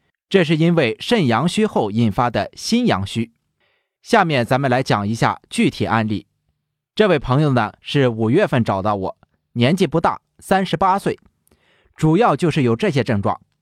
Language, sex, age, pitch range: Chinese, male, 30-49, 115-185 Hz